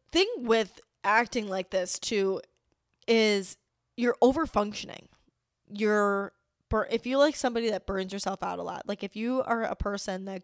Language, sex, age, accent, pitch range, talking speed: English, female, 10-29, American, 190-230 Hz, 160 wpm